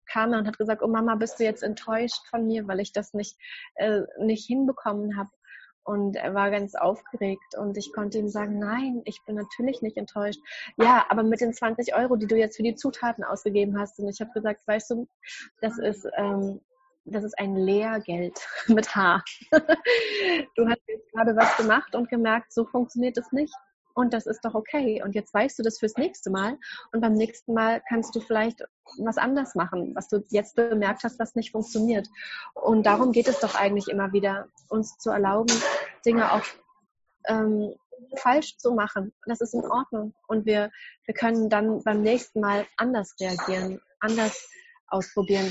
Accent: German